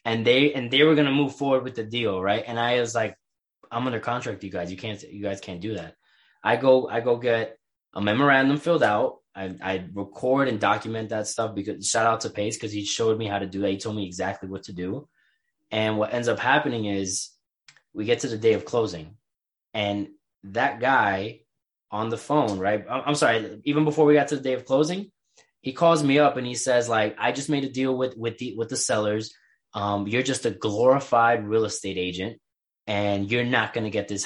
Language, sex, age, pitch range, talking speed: English, male, 20-39, 100-130 Hz, 230 wpm